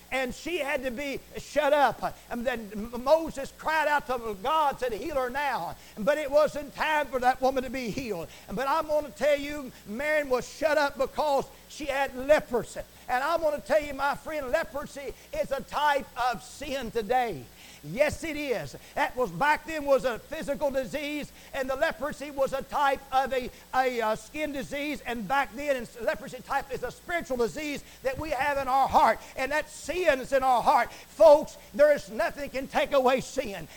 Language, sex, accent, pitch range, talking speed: English, male, American, 255-295 Hz, 195 wpm